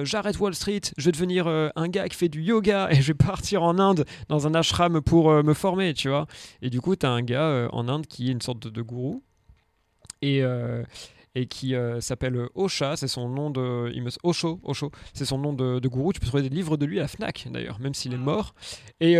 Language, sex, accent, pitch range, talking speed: French, male, French, 130-165 Hz, 250 wpm